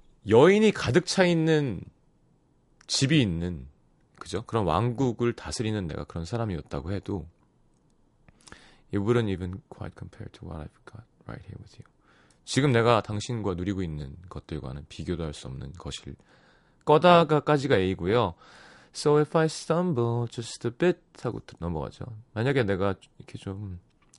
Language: Korean